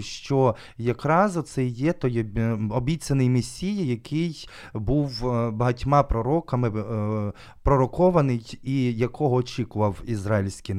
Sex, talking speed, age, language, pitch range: male, 90 wpm, 20-39, Ukrainian, 110-135 Hz